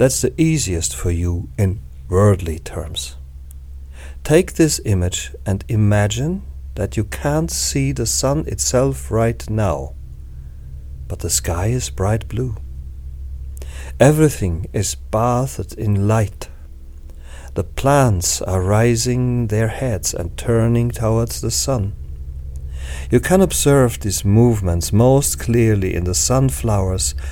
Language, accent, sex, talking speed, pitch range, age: English, German, male, 120 wpm, 75-125 Hz, 50-69